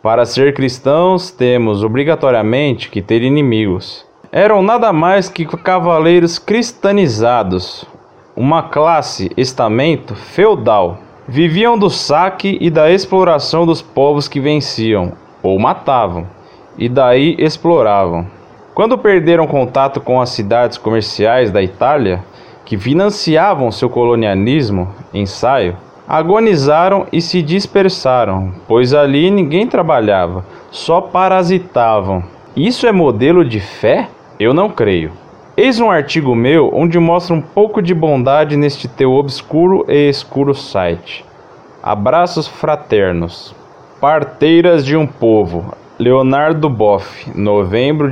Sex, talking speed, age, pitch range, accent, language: male, 110 wpm, 20-39, 115-175 Hz, Brazilian, Portuguese